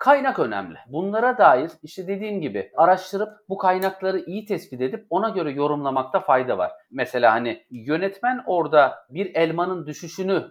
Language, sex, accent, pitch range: Turkish, male, native, 155-215 Hz